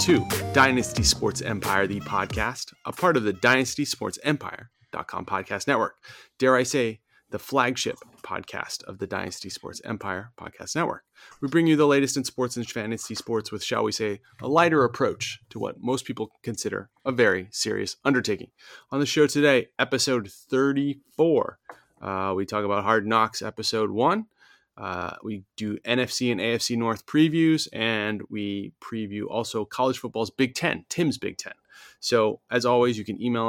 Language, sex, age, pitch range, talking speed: English, male, 30-49, 105-130 Hz, 165 wpm